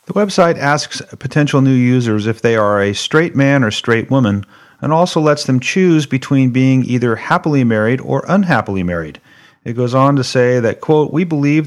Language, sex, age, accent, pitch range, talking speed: English, male, 40-59, American, 115-150 Hz, 190 wpm